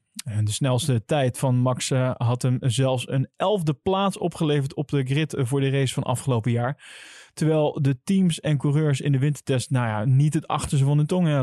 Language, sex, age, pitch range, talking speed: Dutch, male, 20-39, 125-155 Hz, 215 wpm